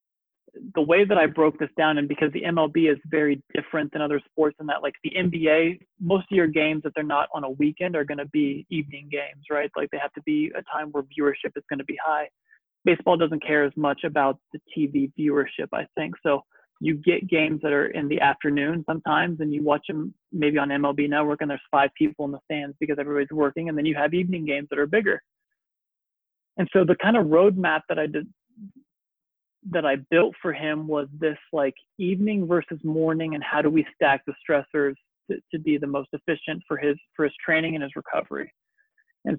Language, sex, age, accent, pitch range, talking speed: English, male, 30-49, American, 145-170 Hz, 220 wpm